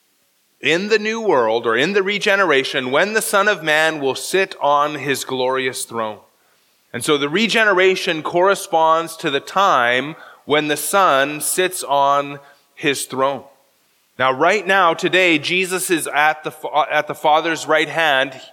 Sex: male